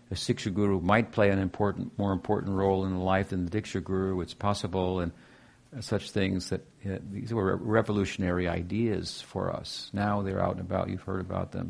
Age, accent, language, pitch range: 50-69, American, English, 90-110 Hz